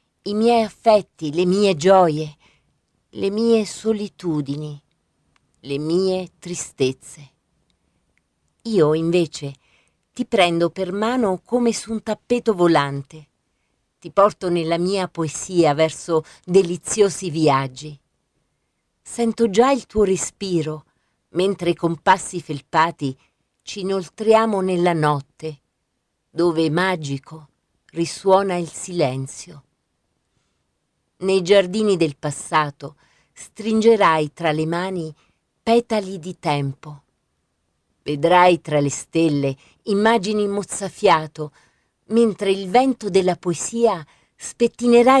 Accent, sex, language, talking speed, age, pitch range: native, female, Italian, 95 wpm, 40-59, 150-205 Hz